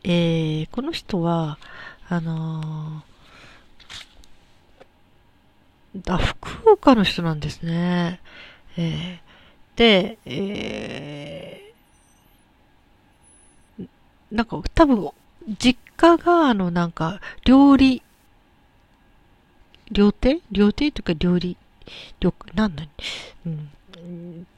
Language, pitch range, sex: Japanese, 165-210 Hz, female